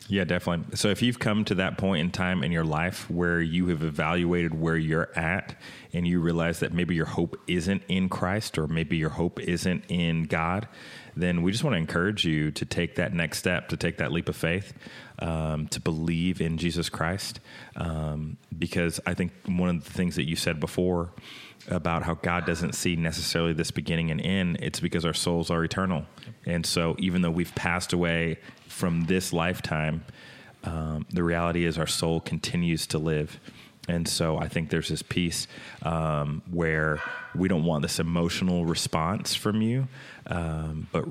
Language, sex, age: English, male, 30-49